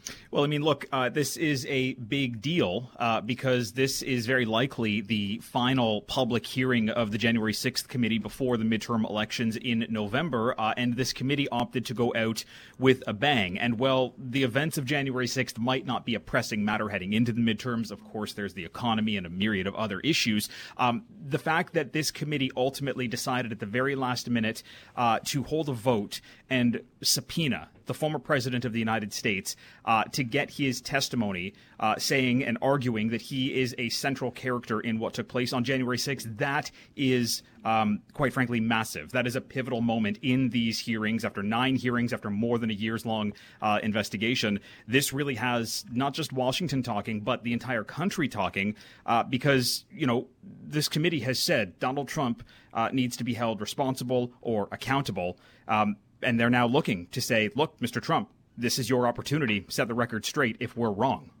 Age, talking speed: 30-49, 190 wpm